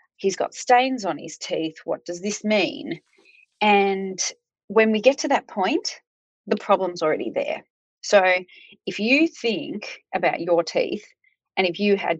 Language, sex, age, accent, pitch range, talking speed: English, female, 30-49, Australian, 175-260 Hz, 160 wpm